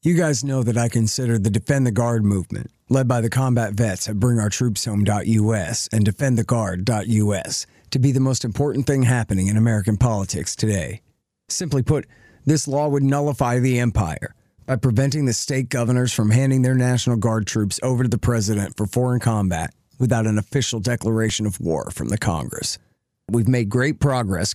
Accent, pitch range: American, 110-140 Hz